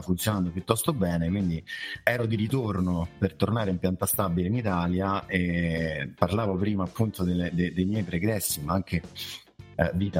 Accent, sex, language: native, male, Italian